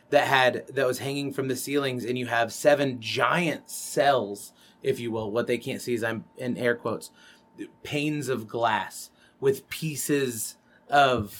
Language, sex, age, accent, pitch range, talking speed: English, male, 30-49, American, 115-135 Hz, 170 wpm